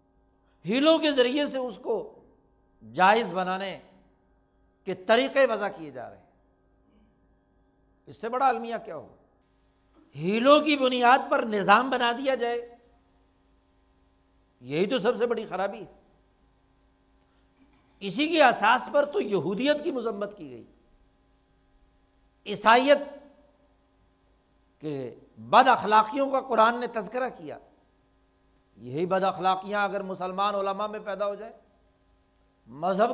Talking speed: 120 wpm